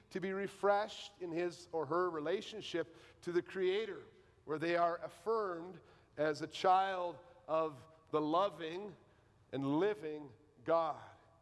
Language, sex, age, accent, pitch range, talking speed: English, male, 50-69, American, 150-210 Hz, 125 wpm